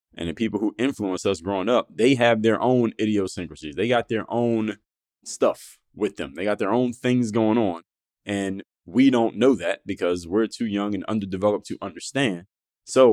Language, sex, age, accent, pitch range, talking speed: English, male, 20-39, American, 100-120 Hz, 190 wpm